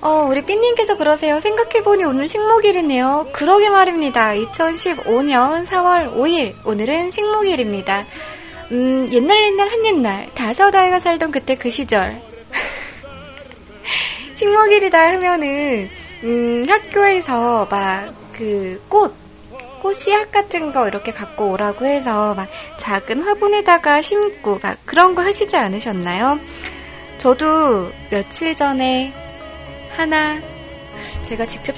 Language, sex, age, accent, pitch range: Korean, female, 20-39, native, 225-365 Hz